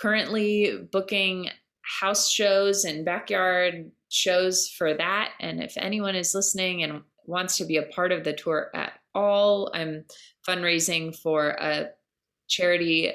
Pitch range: 150-185 Hz